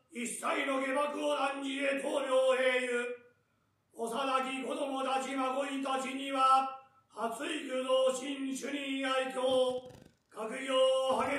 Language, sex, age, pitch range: Japanese, male, 40-59, 260-270 Hz